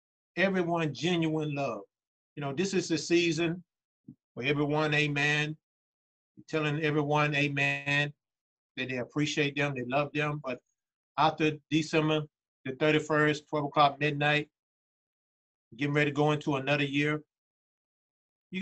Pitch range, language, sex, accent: 145-190 Hz, English, male, American